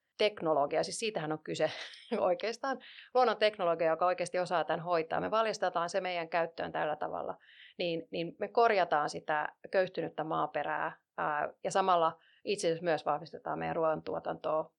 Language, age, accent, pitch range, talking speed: Finnish, 30-49, native, 165-205 Hz, 140 wpm